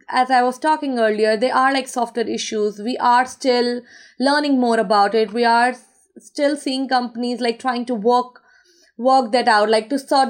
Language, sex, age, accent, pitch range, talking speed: English, female, 20-39, Indian, 220-255 Hz, 185 wpm